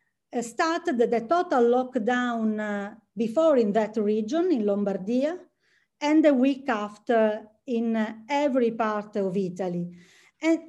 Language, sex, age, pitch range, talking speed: English, female, 40-59, 220-280 Hz, 125 wpm